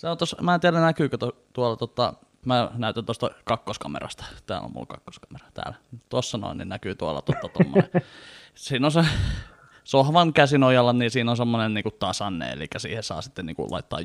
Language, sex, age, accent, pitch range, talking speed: Finnish, male, 20-39, native, 115-140 Hz, 185 wpm